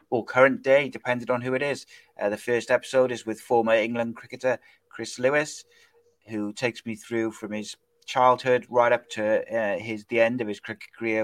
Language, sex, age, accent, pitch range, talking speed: English, male, 30-49, British, 110-130 Hz, 200 wpm